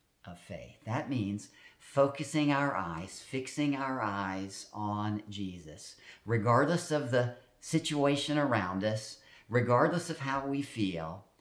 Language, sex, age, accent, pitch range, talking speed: English, male, 50-69, American, 100-140 Hz, 115 wpm